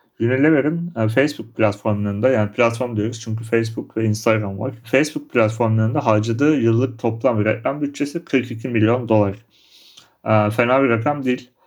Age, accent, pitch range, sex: 40-59, native, 110-130 Hz, male